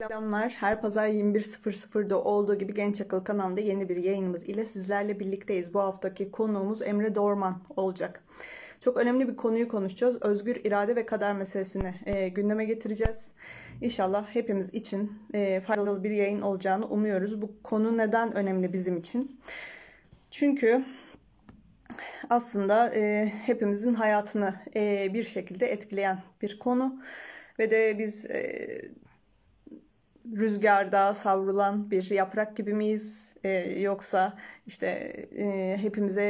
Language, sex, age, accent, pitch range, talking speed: Turkish, female, 30-49, native, 195-225 Hz, 120 wpm